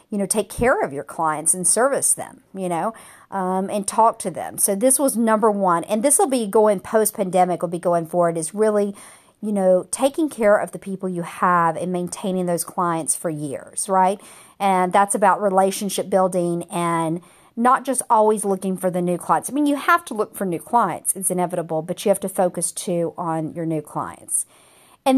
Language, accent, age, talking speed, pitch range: English, American, 50-69, 205 wpm, 175-210 Hz